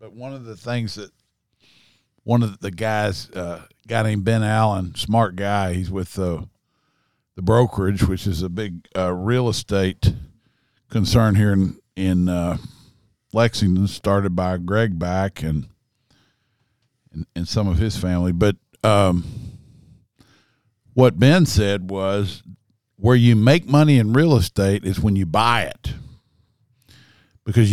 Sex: male